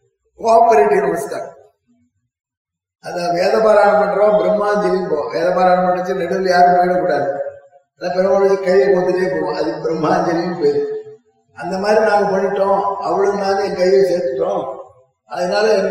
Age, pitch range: 20-39, 175-200 Hz